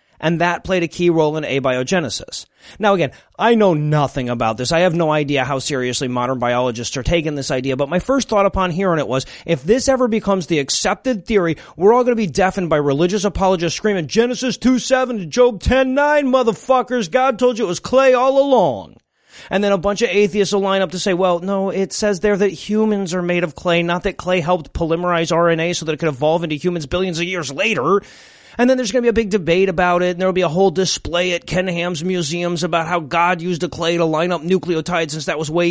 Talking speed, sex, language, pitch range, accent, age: 235 wpm, male, English, 165-200 Hz, American, 30-49